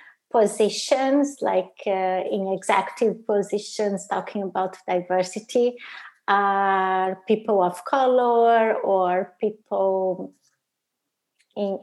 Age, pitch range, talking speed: 20-39, 190-225 Hz, 80 wpm